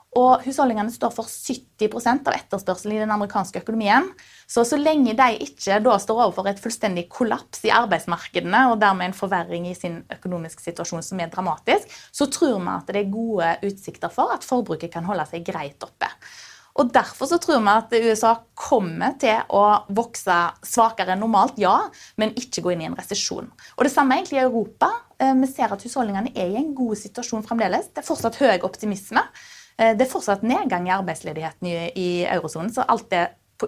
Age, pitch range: 20-39, 185-245 Hz